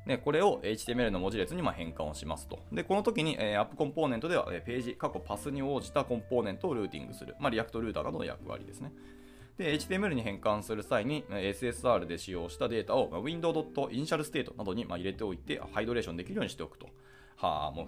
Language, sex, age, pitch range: Japanese, male, 20-39, 95-145 Hz